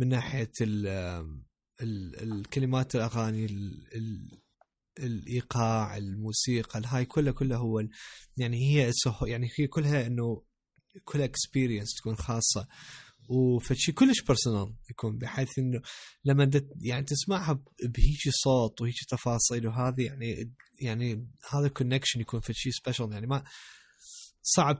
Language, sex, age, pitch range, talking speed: Arabic, male, 20-39, 110-130 Hz, 120 wpm